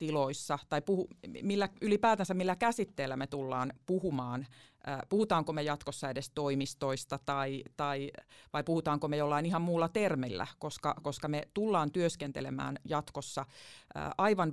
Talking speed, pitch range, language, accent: 130 wpm, 140-175 Hz, Finnish, native